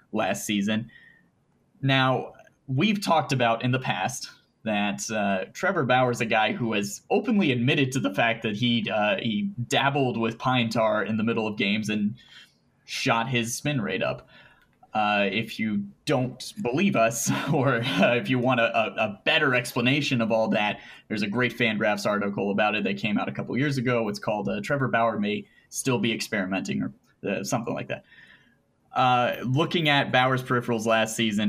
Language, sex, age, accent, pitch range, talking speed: English, male, 20-39, American, 110-130 Hz, 185 wpm